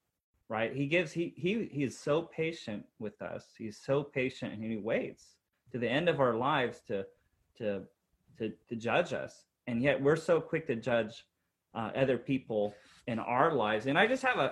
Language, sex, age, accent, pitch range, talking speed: English, male, 30-49, American, 110-145 Hz, 195 wpm